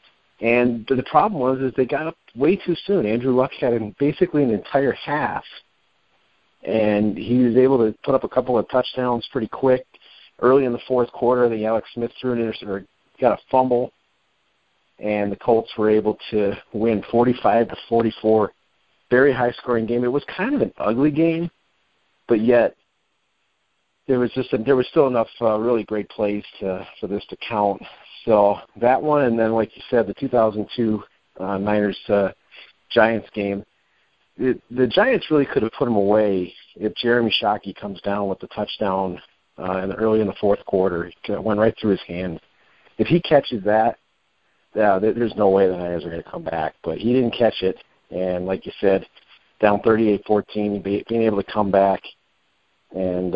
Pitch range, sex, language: 100-120 Hz, male, English